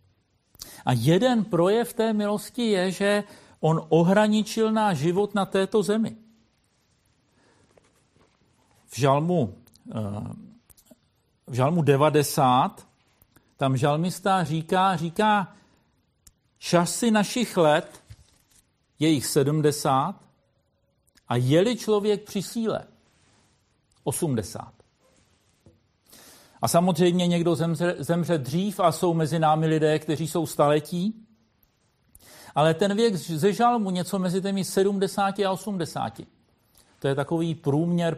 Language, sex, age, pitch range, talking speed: Czech, male, 50-69, 150-205 Hz, 100 wpm